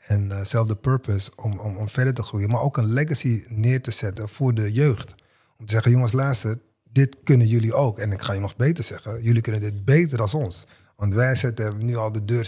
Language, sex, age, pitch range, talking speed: Dutch, male, 30-49, 105-130 Hz, 240 wpm